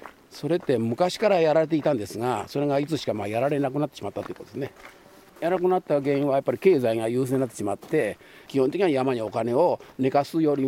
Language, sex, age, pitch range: Japanese, male, 50-69, 130-175 Hz